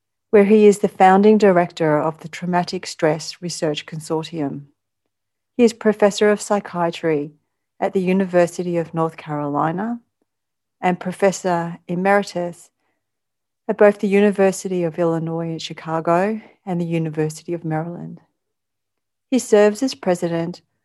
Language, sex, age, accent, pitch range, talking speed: English, female, 40-59, Australian, 160-200 Hz, 125 wpm